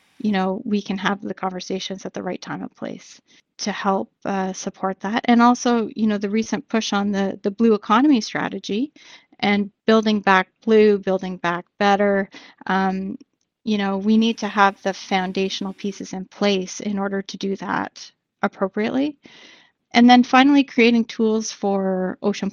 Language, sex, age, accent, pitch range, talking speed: English, female, 30-49, American, 195-225 Hz, 170 wpm